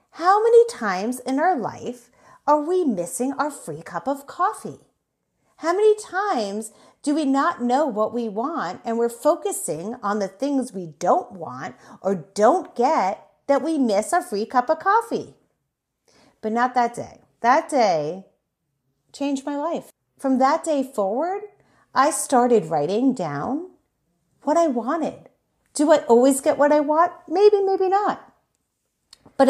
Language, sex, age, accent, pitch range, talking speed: English, female, 40-59, American, 175-285 Hz, 155 wpm